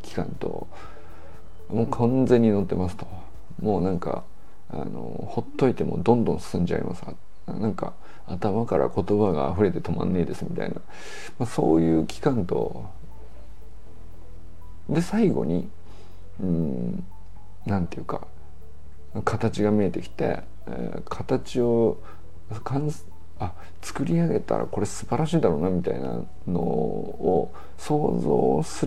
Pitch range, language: 80-110 Hz, Japanese